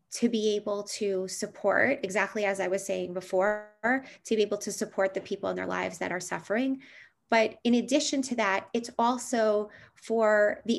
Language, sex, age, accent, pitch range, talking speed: English, female, 20-39, American, 205-265 Hz, 185 wpm